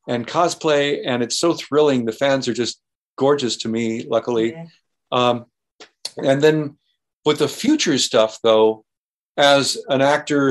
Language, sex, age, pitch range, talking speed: English, male, 50-69, 120-140 Hz, 145 wpm